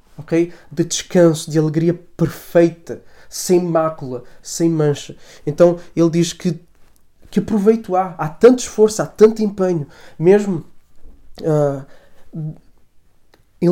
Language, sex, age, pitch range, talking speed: Portuguese, male, 20-39, 160-185 Hz, 105 wpm